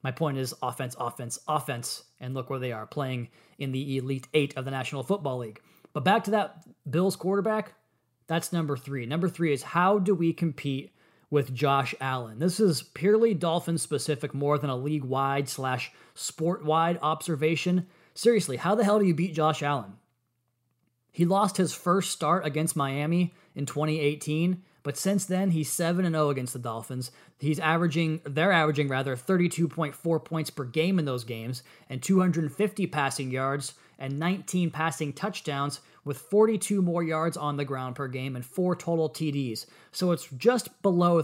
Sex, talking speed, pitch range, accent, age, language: male, 170 wpm, 135-175 Hz, American, 30-49, English